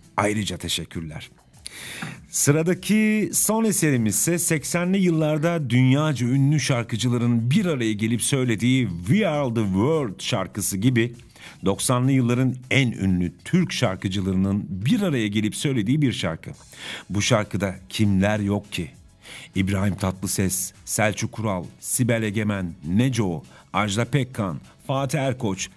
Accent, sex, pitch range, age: native, male, 100-140 Hz, 50-69